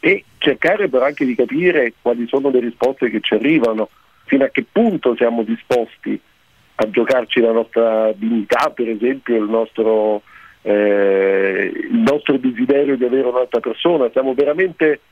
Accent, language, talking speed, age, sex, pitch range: native, Italian, 150 wpm, 50-69, male, 120-150 Hz